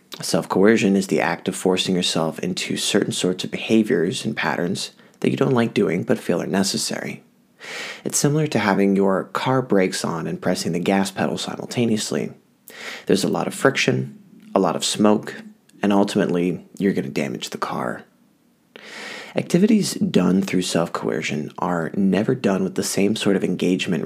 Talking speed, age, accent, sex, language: 165 wpm, 30-49, American, male, English